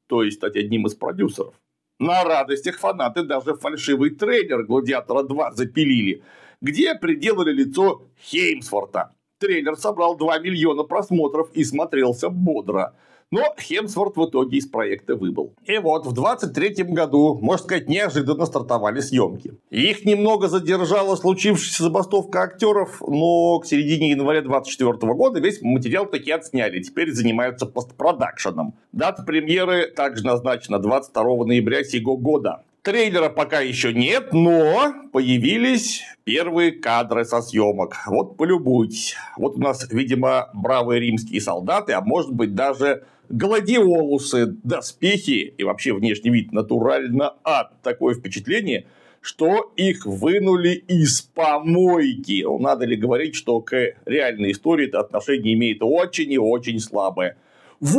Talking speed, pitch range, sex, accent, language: 130 wpm, 125-190 Hz, male, native, Russian